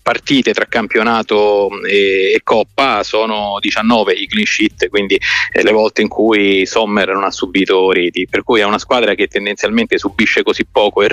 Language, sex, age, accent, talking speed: Italian, male, 30-49, native, 165 wpm